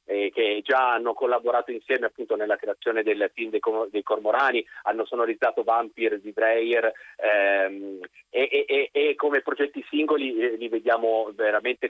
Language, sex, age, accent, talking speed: Italian, male, 30-49, native, 155 wpm